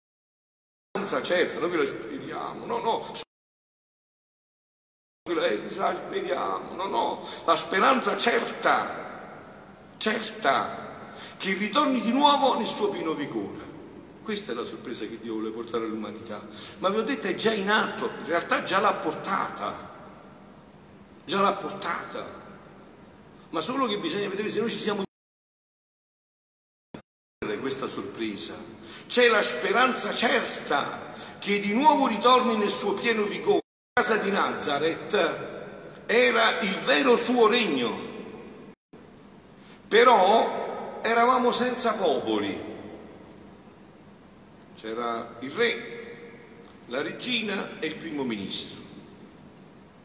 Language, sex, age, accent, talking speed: Italian, male, 60-79, native, 110 wpm